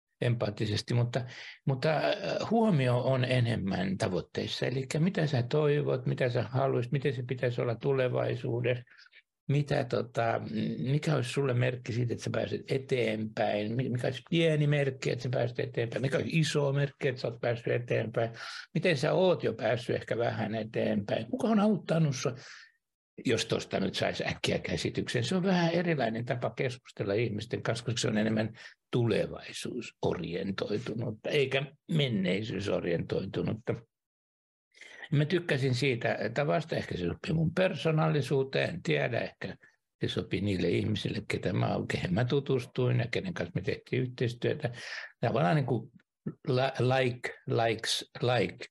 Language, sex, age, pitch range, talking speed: Finnish, male, 60-79, 120-145 Hz, 135 wpm